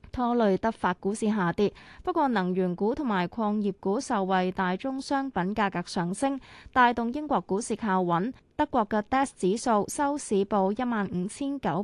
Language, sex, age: Chinese, female, 20-39